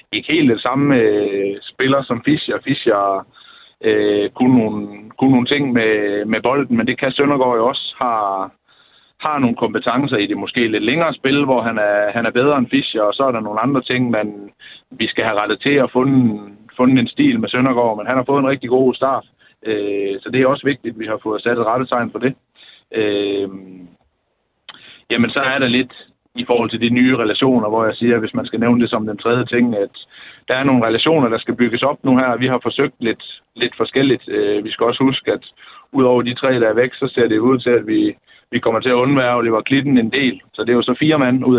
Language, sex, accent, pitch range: Danish, male, native, 110-130 Hz